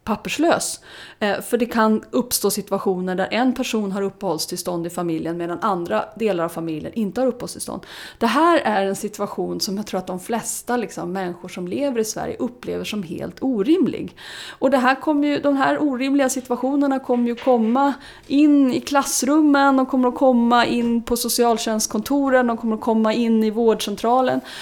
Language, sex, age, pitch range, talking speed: Swedish, female, 30-49, 205-265 Hz, 160 wpm